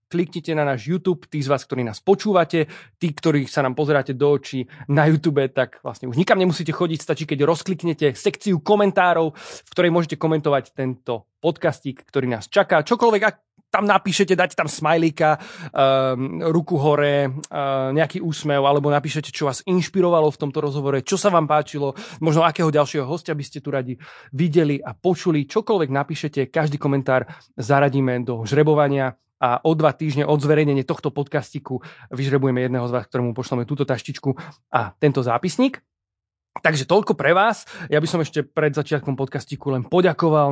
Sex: male